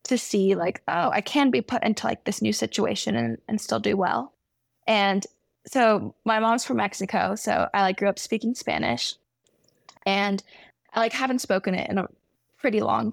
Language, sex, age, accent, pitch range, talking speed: English, female, 10-29, American, 195-250 Hz, 185 wpm